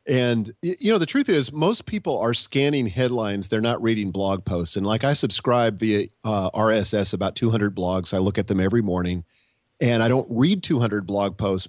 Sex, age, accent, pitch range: male, 40-59, American, 105-125 Hz